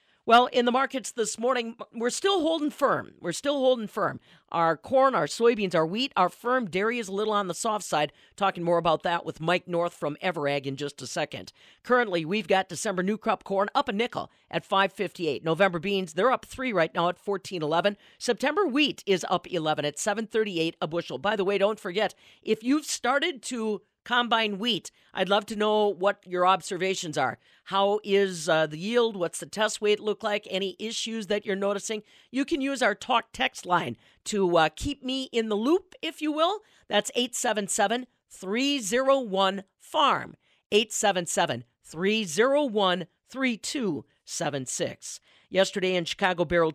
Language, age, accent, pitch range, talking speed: English, 40-59, American, 175-225 Hz, 170 wpm